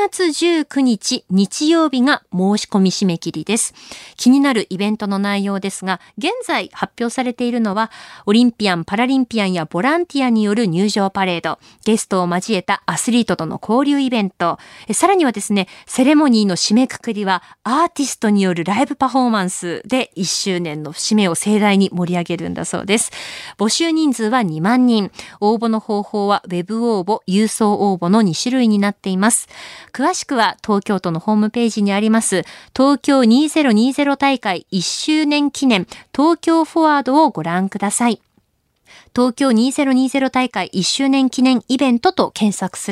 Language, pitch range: Japanese, 190-260 Hz